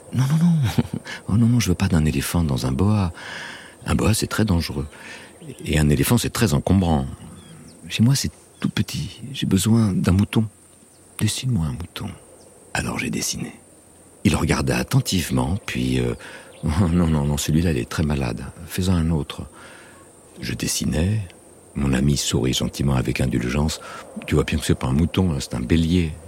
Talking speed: 185 wpm